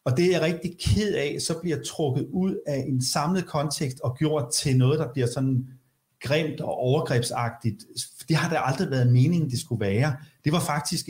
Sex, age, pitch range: male, 40-59, 125-165 Hz